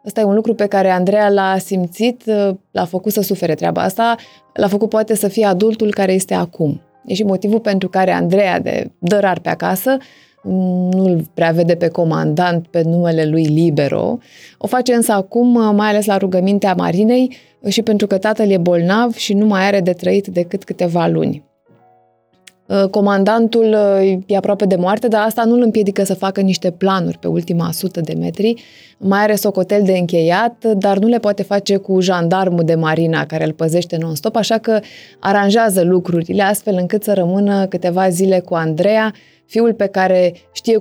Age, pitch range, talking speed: 20-39, 180-210 Hz, 180 wpm